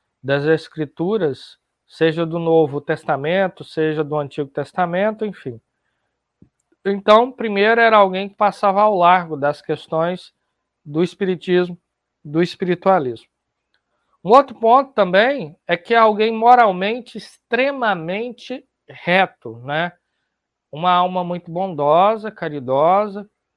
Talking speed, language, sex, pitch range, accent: 105 wpm, Portuguese, male, 160-225 Hz, Brazilian